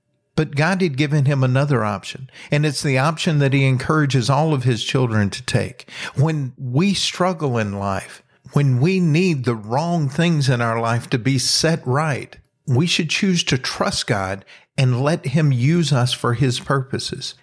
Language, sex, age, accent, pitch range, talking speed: English, male, 50-69, American, 125-155 Hz, 180 wpm